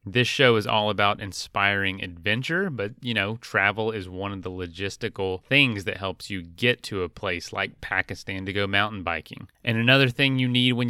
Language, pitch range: English, 100-120 Hz